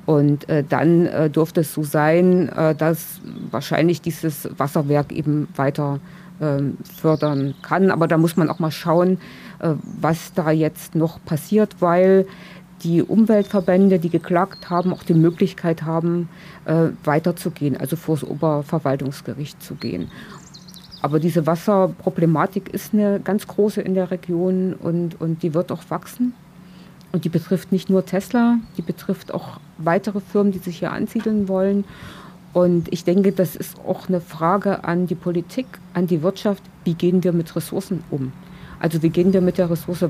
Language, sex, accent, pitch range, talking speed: German, female, German, 165-190 Hz, 160 wpm